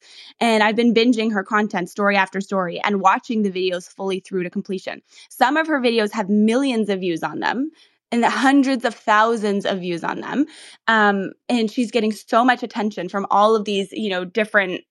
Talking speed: 195 wpm